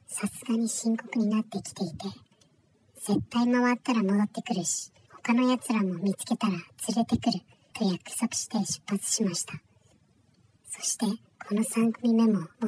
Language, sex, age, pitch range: Japanese, male, 40-59, 185-230 Hz